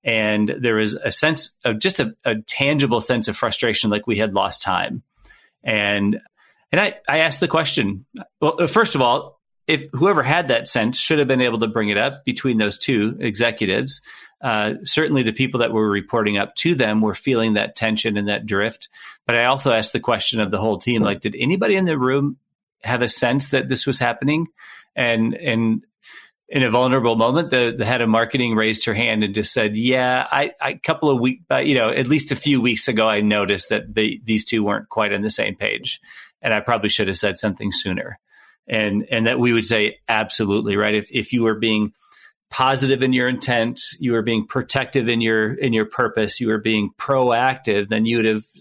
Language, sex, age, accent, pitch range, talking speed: English, male, 30-49, American, 110-135 Hz, 215 wpm